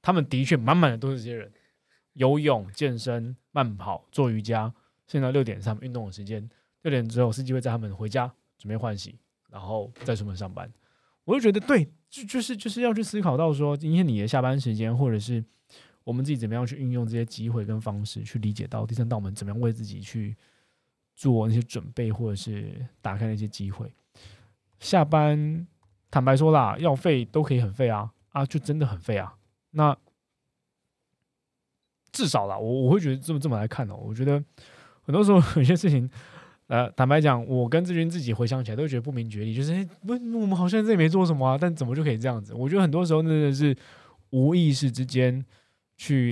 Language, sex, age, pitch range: Chinese, male, 20-39, 110-150 Hz